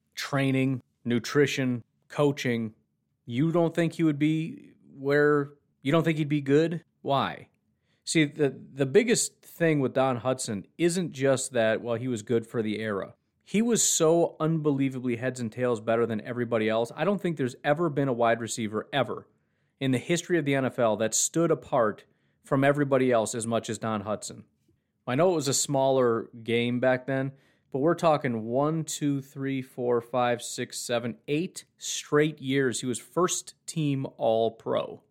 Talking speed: 175 wpm